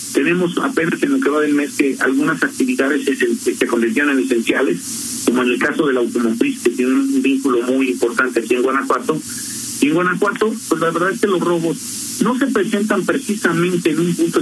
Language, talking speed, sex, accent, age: Spanish, 205 wpm, male, Mexican, 40-59